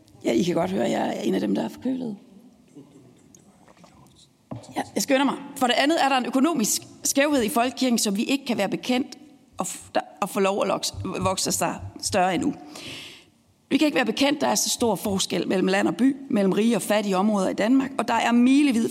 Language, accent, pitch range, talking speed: Danish, native, 210-270 Hz, 225 wpm